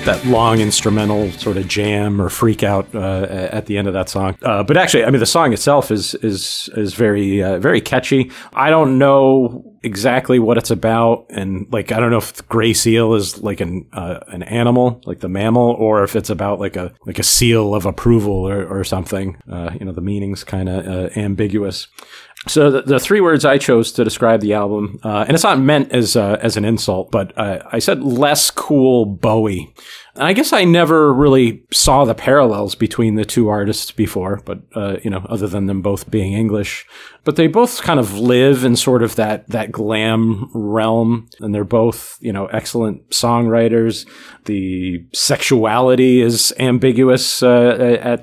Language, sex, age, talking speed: English, male, 40-59, 195 wpm